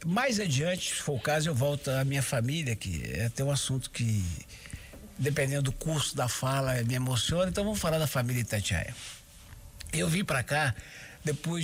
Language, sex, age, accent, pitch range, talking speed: Portuguese, male, 60-79, Brazilian, 120-165 Hz, 180 wpm